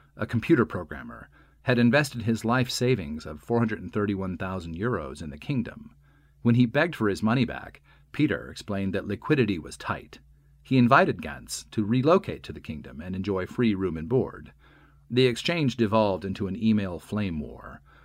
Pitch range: 80-120 Hz